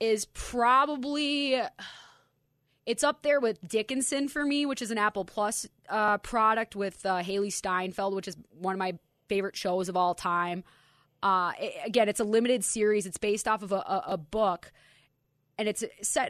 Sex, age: female, 20-39